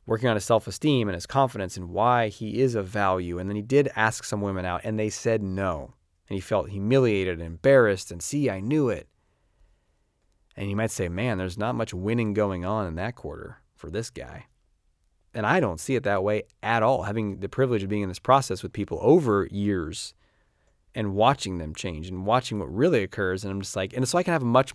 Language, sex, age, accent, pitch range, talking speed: English, male, 30-49, American, 90-120 Hz, 230 wpm